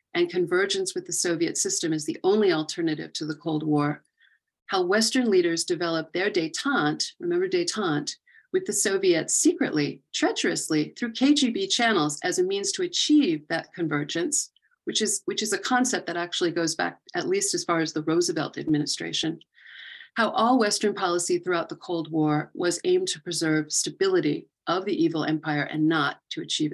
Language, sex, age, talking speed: English, female, 40-59, 170 wpm